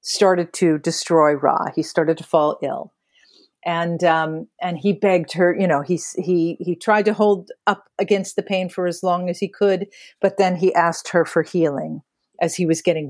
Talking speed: 200 wpm